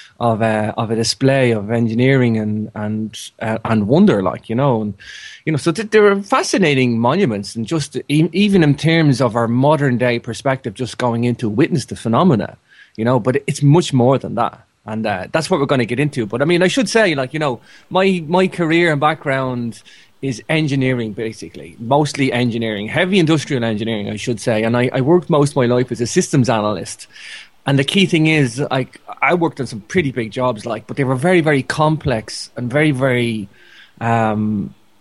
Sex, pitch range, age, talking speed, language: male, 120-150 Hz, 30-49, 205 wpm, English